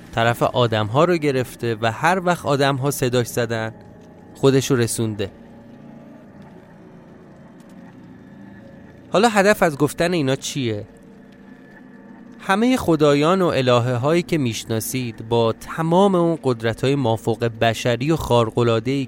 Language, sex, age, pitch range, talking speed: Persian, male, 30-49, 115-160 Hz, 105 wpm